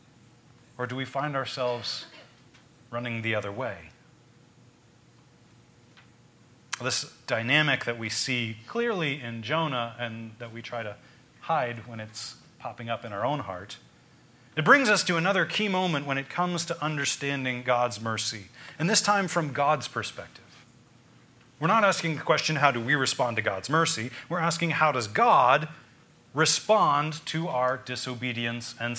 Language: English